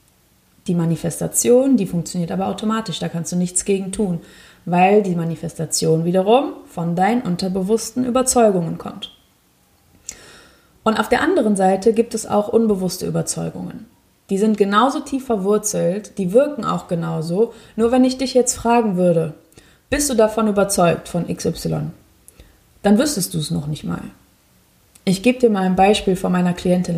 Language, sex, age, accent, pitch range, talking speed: German, female, 20-39, German, 175-230 Hz, 155 wpm